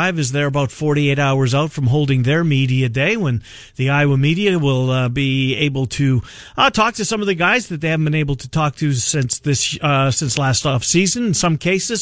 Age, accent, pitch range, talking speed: 50-69, American, 130-165 Hz, 220 wpm